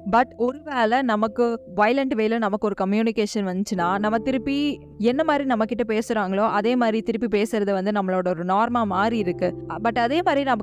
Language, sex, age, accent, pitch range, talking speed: Tamil, female, 20-39, native, 200-240 Hz, 175 wpm